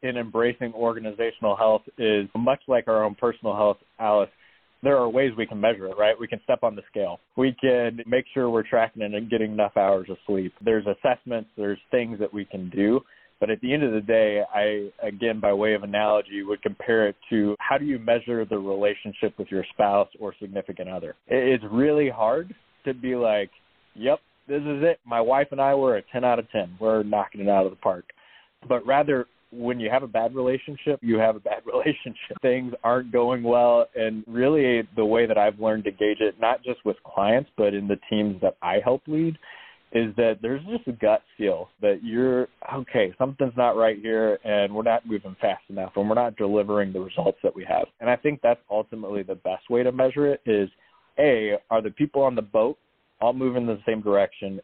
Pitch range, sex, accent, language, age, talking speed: 105-125 Hz, male, American, English, 20-39, 215 wpm